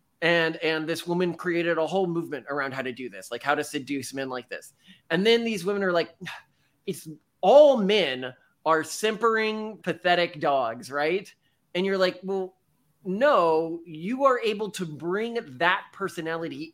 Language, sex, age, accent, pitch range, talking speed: English, male, 20-39, American, 150-195 Hz, 165 wpm